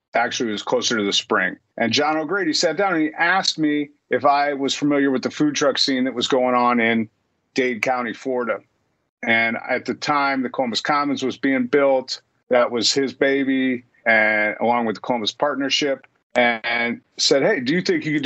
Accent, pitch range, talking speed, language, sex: American, 125-150 Hz, 200 wpm, English, male